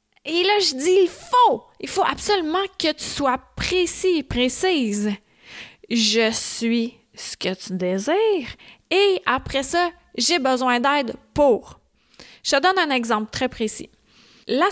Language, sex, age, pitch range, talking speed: French, female, 20-39, 225-345 Hz, 145 wpm